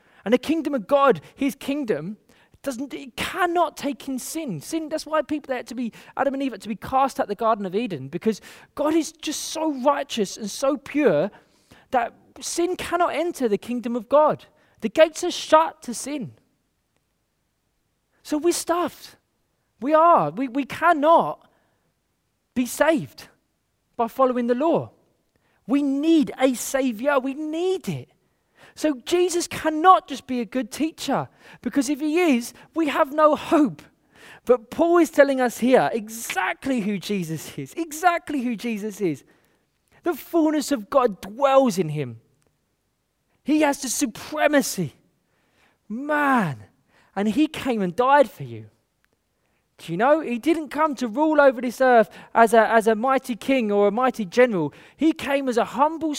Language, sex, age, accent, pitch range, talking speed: English, male, 20-39, British, 230-305 Hz, 160 wpm